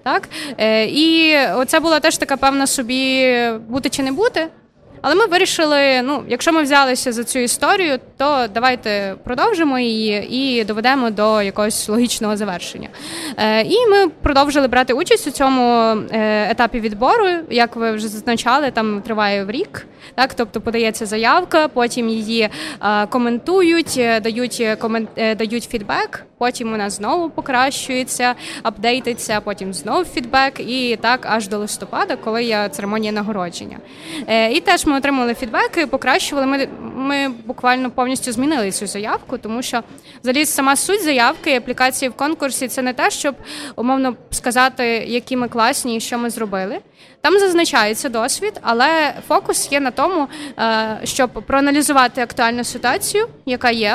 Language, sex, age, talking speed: Ukrainian, female, 20-39, 140 wpm